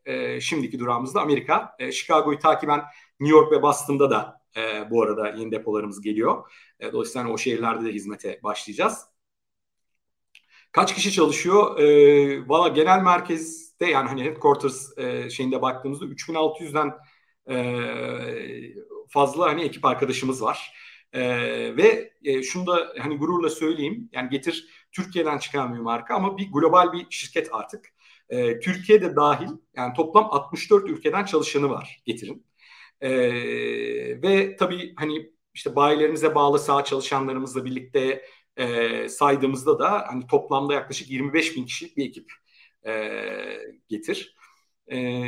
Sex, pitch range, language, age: male, 130-170 Hz, Turkish, 50-69